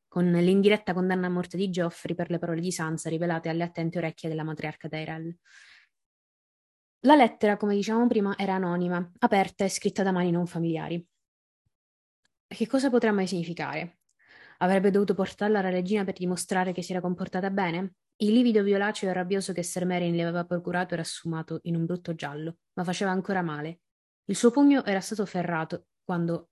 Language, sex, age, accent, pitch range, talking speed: Italian, female, 20-39, native, 170-200 Hz, 175 wpm